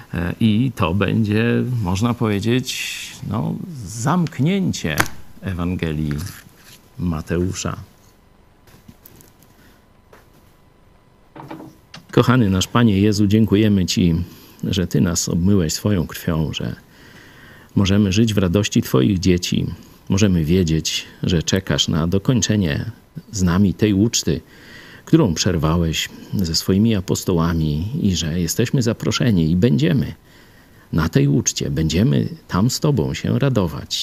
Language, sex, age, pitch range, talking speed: Polish, male, 50-69, 85-115 Hz, 100 wpm